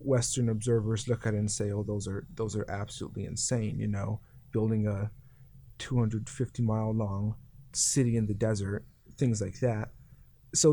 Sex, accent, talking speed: male, American, 155 wpm